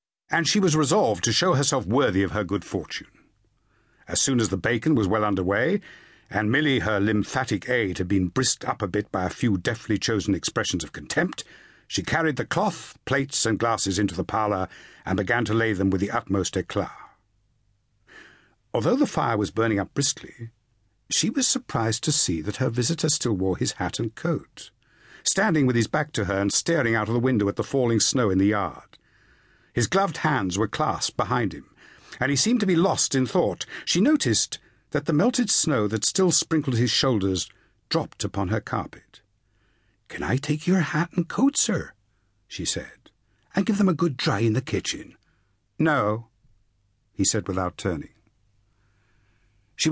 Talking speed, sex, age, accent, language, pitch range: 185 wpm, male, 60-79, British, English, 100-150 Hz